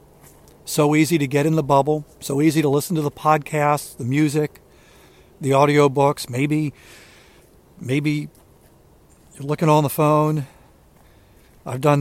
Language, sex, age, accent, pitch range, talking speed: English, male, 60-79, American, 130-150 Hz, 135 wpm